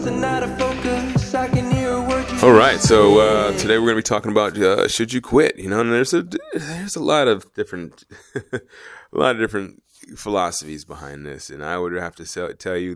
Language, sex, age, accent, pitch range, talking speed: English, male, 30-49, American, 90-115 Hz, 180 wpm